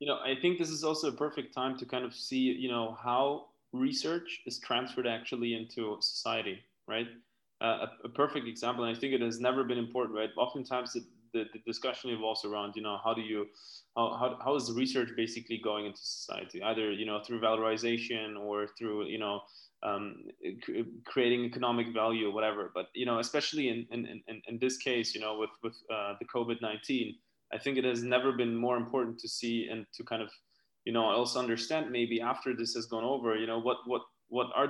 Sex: male